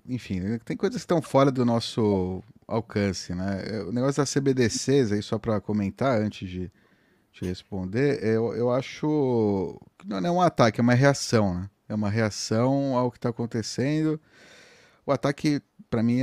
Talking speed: 165 wpm